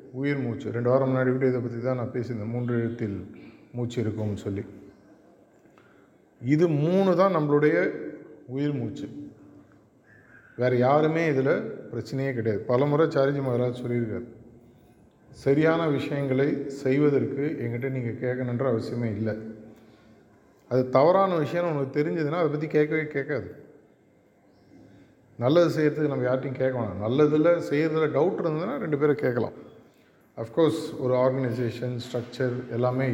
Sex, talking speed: male, 120 wpm